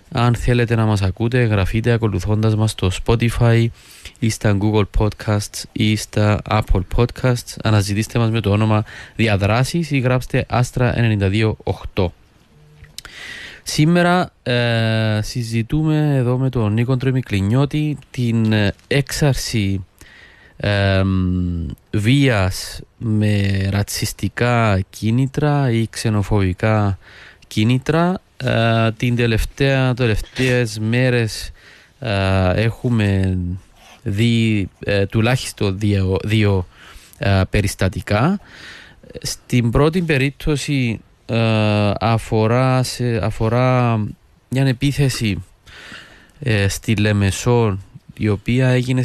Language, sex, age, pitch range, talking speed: Greek, male, 20-39, 100-125 Hz, 90 wpm